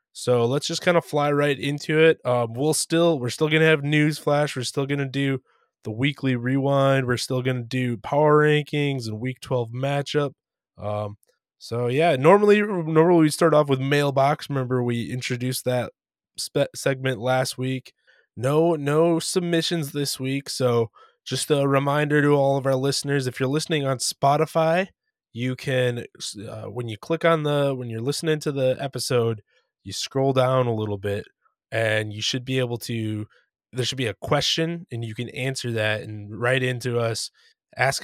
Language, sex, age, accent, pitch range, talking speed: English, male, 20-39, American, 120-150 Hz, 180 wpm